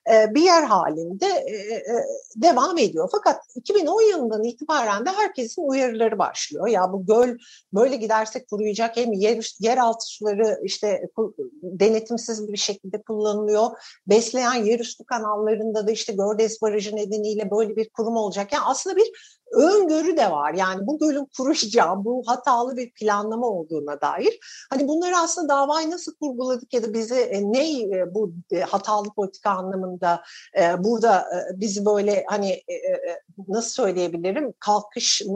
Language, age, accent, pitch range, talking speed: Turkish, 60-79, native, 200-285 Hz, 135 wpm